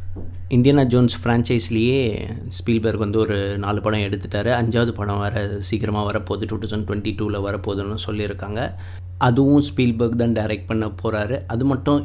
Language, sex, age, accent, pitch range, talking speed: Tamil, male, 30-49, native, 100-115 Hz, 140 wpm